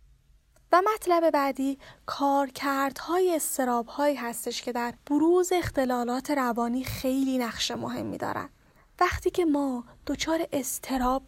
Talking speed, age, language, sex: 105 wpm, 10-29, Persian, female